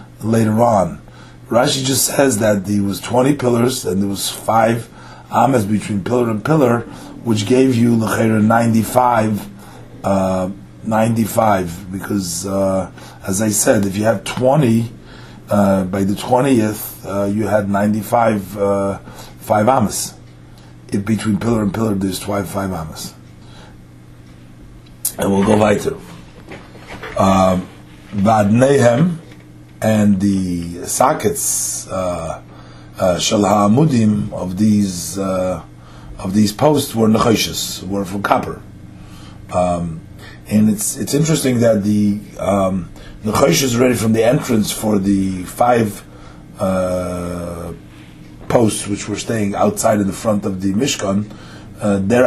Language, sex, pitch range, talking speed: English, male, 90-110 Hz, 120 wpm